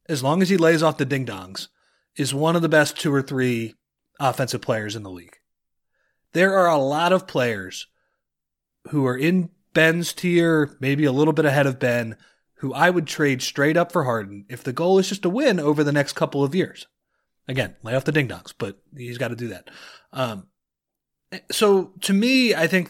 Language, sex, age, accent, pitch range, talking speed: English, male, 30-49, American, 115-155 Hz, 200 wpm